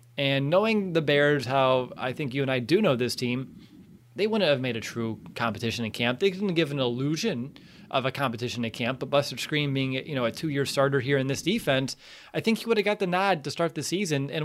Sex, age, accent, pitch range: male, 30-49, American, 130-160 Hz